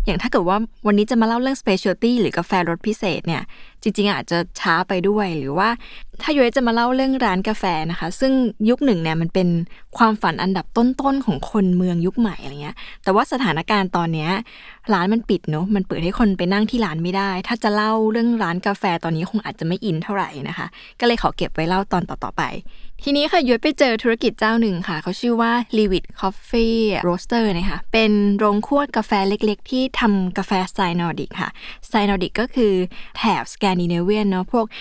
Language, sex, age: Thai, female, 20-39